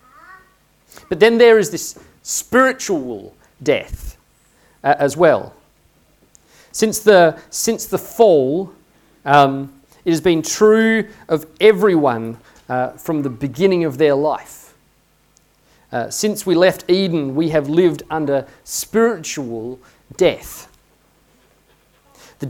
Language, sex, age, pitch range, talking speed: English, male, 40-59, 125-165 Hz, 110 wpm